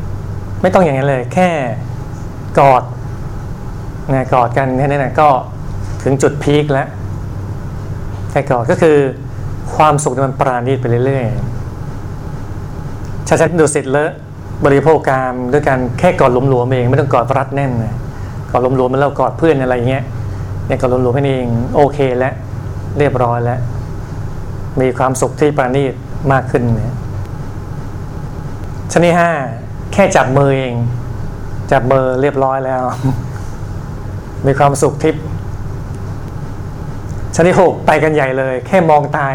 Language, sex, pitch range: Thai, male, 120-145 Hz